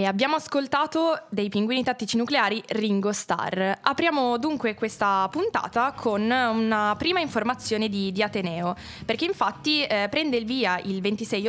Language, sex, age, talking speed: Italian, female, 20-39, 145 wpm